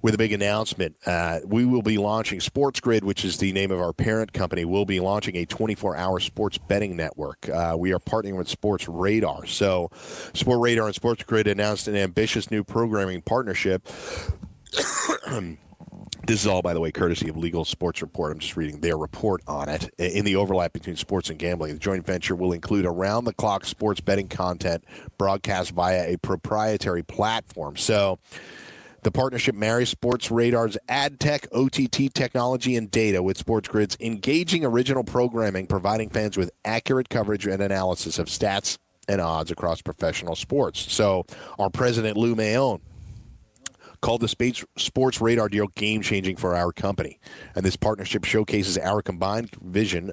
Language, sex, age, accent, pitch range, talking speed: English, male, 40-59, American, 90-115 Hz, 170 wpm